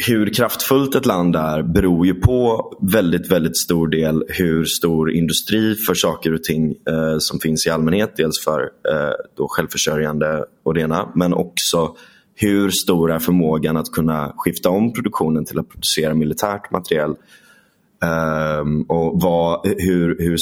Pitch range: 80-90 Hz